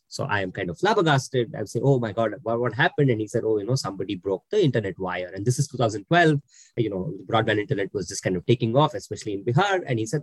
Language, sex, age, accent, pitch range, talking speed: English, male, 20-39, Indian, 115-155 Hz, 265 wpm